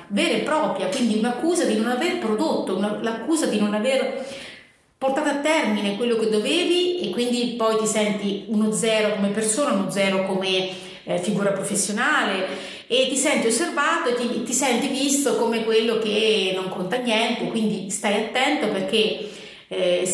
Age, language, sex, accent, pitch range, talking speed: 30-49, Italian, female, native, 205-245 Hz, 160 wpm